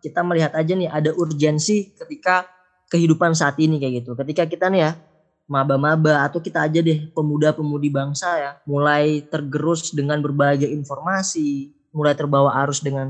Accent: native